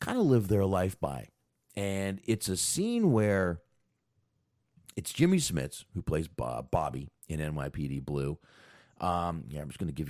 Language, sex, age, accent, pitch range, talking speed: English, male, 40-59, American, 75-110 Hz, 160 wpm